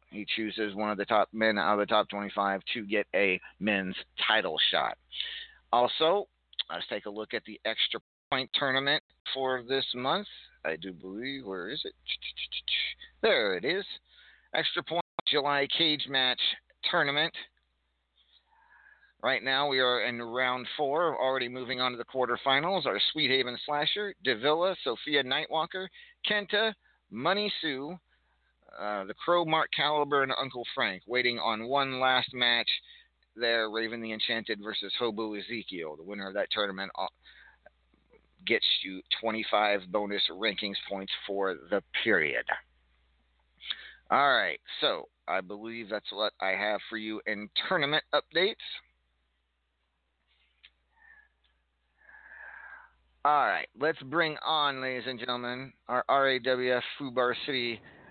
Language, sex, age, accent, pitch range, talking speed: English, male, 40-59, American, 105-145 Hz, 135 wpm